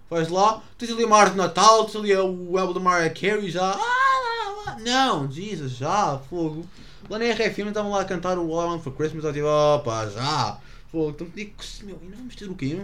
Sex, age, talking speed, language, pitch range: male, 20-39, 230 wpm, English, 110-175 Hz